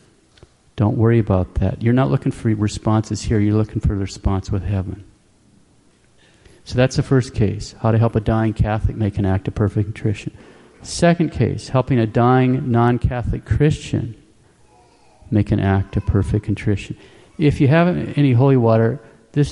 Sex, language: male, English